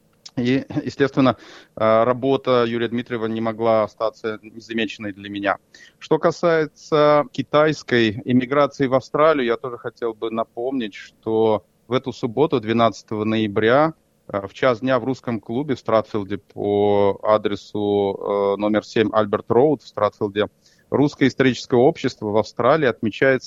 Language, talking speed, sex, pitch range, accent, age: Russian, 130 wpm, male, 110-130 Hz, native, 30-49